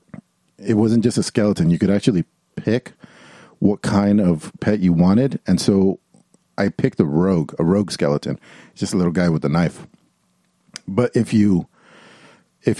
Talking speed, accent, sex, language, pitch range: 170 wpm, American, male, English, 90-110 Hz